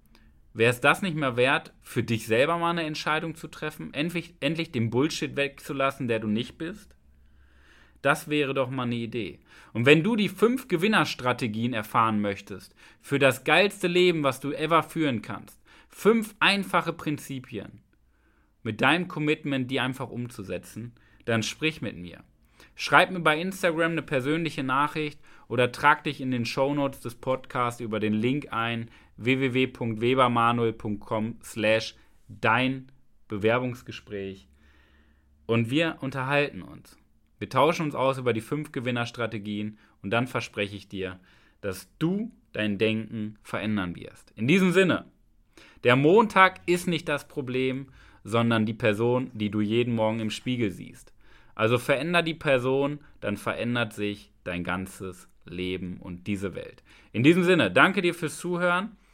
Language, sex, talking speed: German, male, 145 wpm